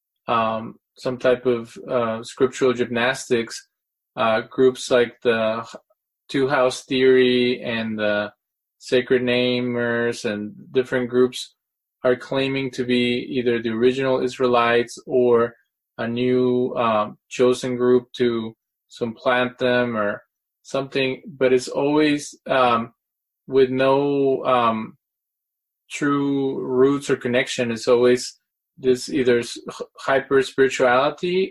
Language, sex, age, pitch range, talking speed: English, male, 20-39, 120-130 Hz, 110 wpm